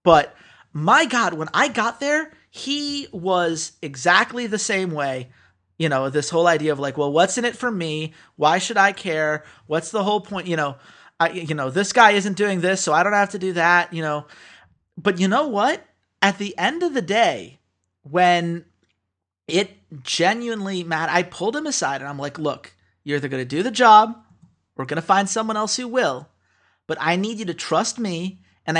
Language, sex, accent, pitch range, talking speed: English, male, American, 155-215 Hz, 205 wpm